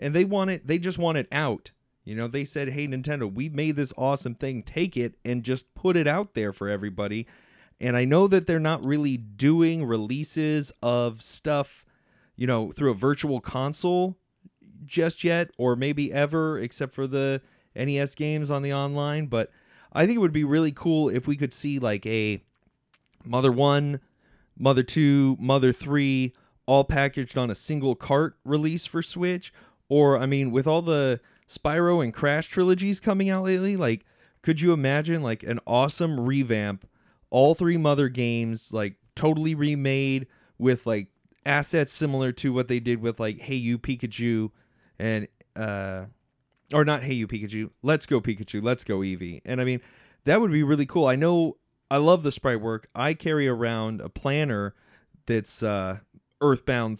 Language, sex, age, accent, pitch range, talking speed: English, male, 30-49, American, 120-150 Hz, 175 wpm